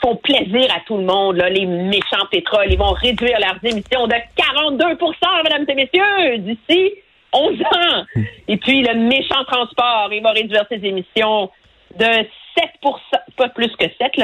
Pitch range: 205-305 Hz